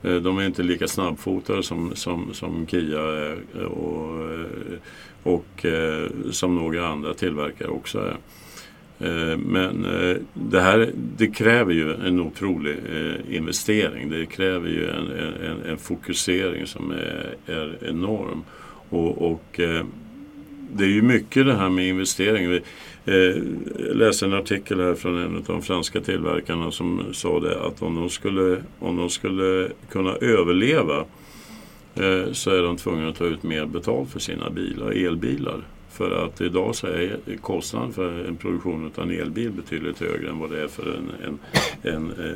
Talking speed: 150 wpm